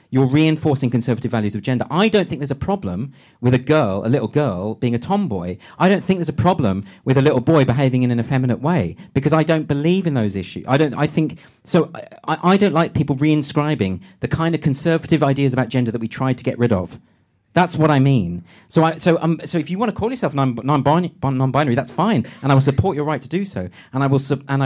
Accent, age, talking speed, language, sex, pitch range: British, 40-59, 250 wpm, English, male, 125-160 Hz